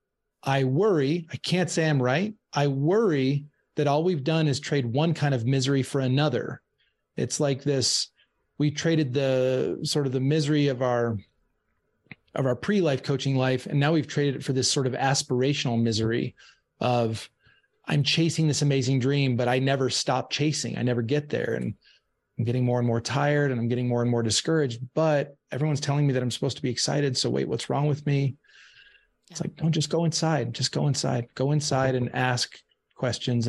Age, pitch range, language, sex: 30-49, 125-150 Hz, English, male